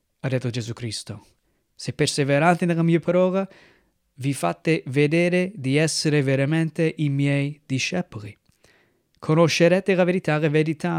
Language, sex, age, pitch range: Italian, male, 20-39, 135-175 Hz